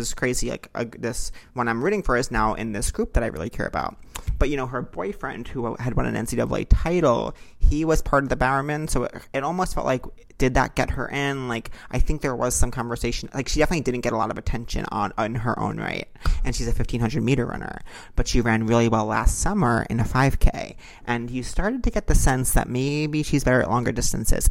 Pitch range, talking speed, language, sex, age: 115-135 Hz, 240 wpm, English, male, 30-49